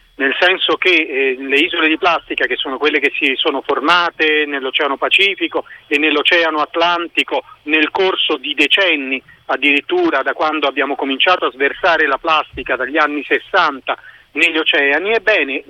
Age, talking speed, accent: 40-59, 150 wpm, native